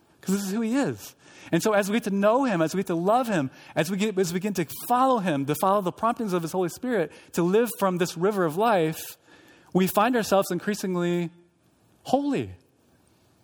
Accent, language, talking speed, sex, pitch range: American, English, 220 wpm, male, 140-195 Hz